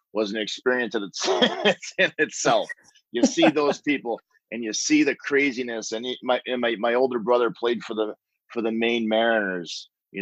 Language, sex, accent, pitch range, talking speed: English, male, American, 100-120 Hz, 180 wpm